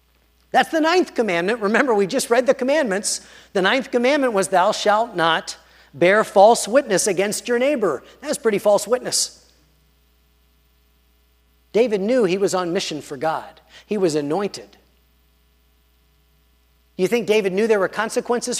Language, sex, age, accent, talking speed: English, male, 40-59, American, 145 wpm